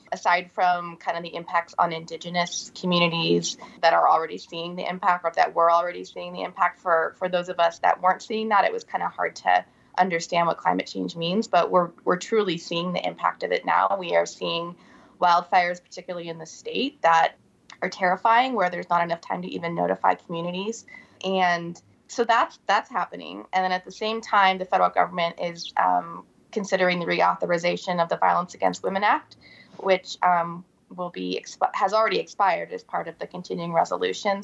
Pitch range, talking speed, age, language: 170-190 Hz, 195 wpm, 20-39, English